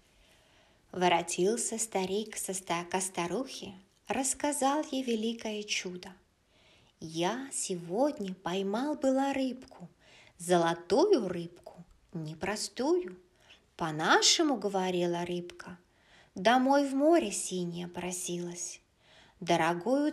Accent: native